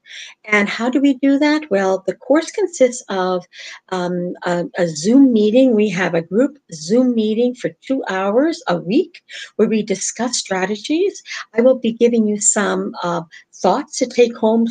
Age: 50-69